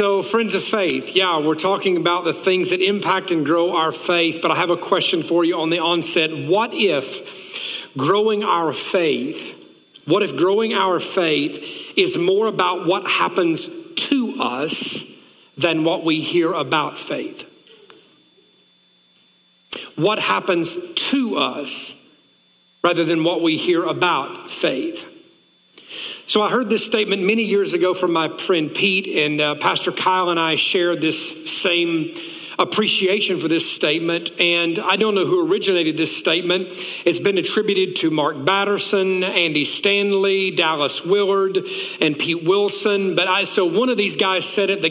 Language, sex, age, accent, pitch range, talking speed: English, male, 40-59, American, 170-215 Hz, 155 wpm